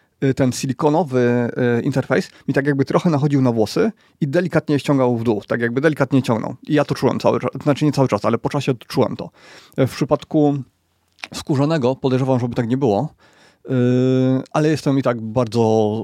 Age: 30-49